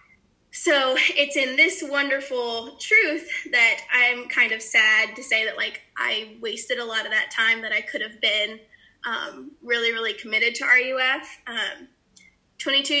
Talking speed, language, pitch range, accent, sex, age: 160 wpm, English, 225-265 Hz, American, female, 10-29